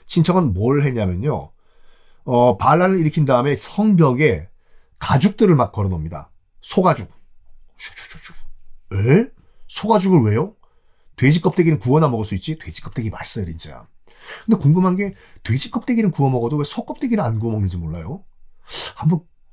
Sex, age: male, 40-59